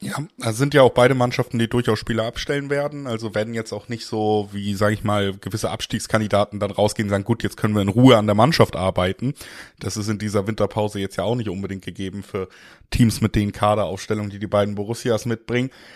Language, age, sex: German, 20-39, male